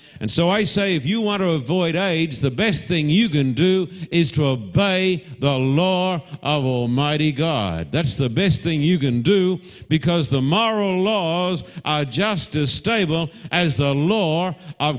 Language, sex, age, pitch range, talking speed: English, male, 50-69, 135-180 Hz, 170 wpm